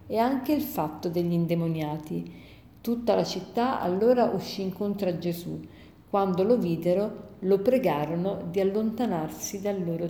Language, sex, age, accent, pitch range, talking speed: Italian, female, 50-69, native, 175-225 Hz, 135 wpm